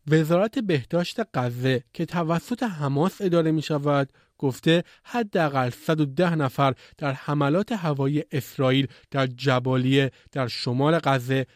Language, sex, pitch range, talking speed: Persian, male, 145-185 Hz, 115 wpm